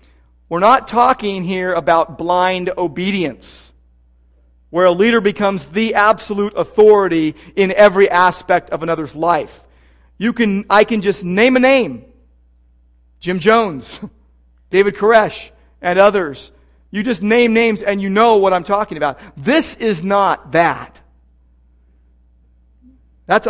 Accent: American